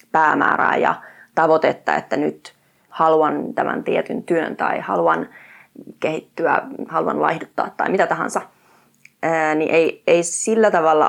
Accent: native